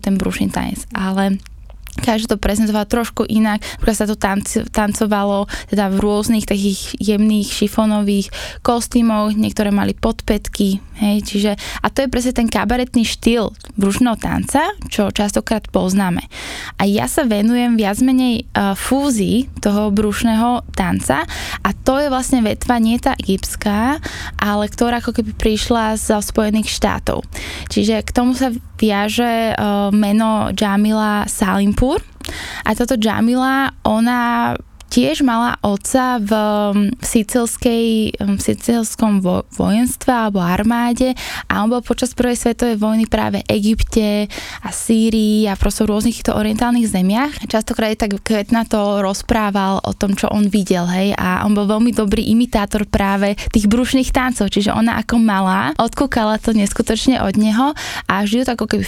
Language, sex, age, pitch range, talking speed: Slovak, female, 10-29, 205-235 Hz, 140 wpm